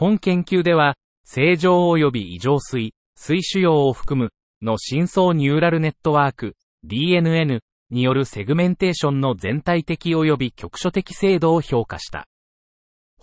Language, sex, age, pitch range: Japanese, male, 40-59, 120-170 Hz